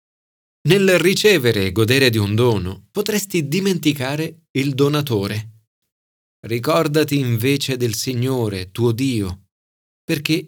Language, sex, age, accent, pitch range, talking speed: Italian, male, 40-59, native, 110-160 Hz, 105 wpm